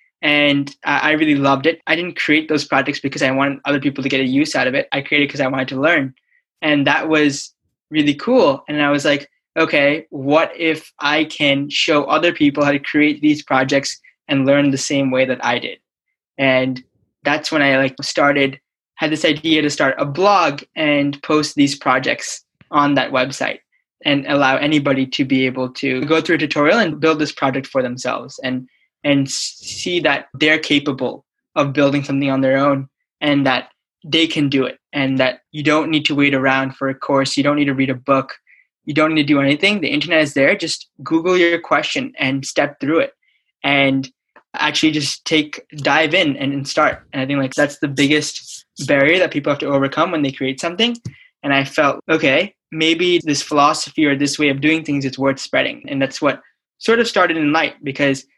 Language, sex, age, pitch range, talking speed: English, male, 10-29, 135-155 Hz, 210 wpm